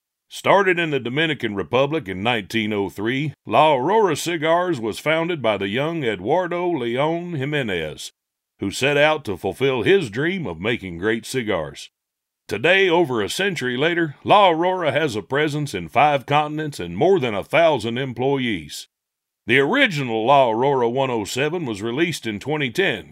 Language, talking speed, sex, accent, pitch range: English, 150 wpm, male, American, 115-165 Hz